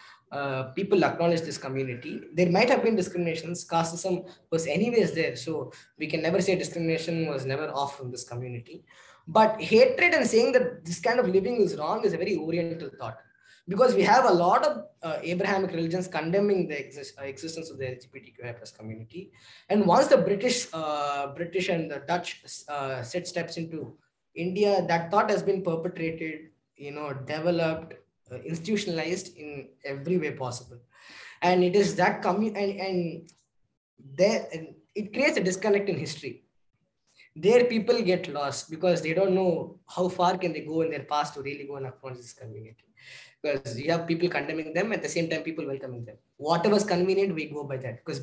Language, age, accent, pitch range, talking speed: English, 20-39, Indian, 140-185 Hz, 180 wpm